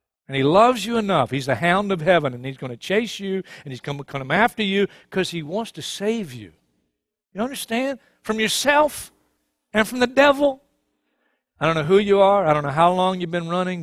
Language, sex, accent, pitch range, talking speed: English, male, American, 130-190 Hz, 220 wpm